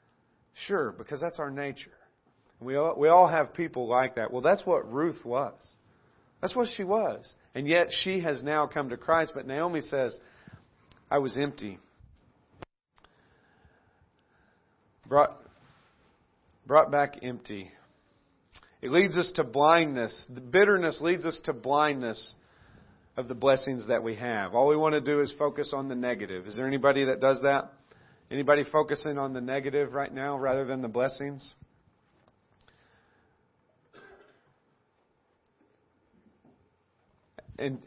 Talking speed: 135 wpm